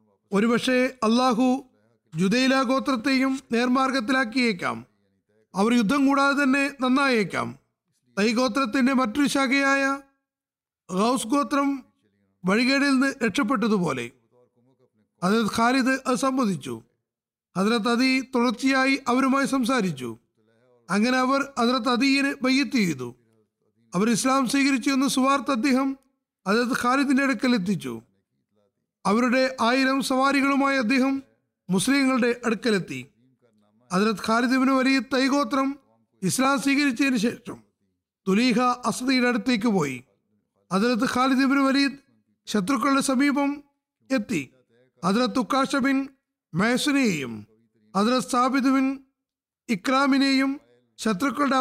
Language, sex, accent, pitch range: Malayalam, male, native, 180-270 Hz